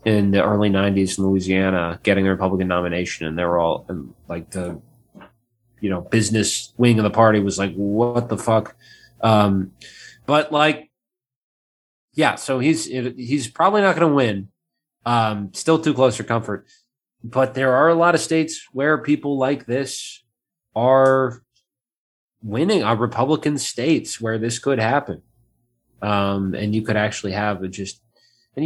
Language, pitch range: English, 95-120 Hz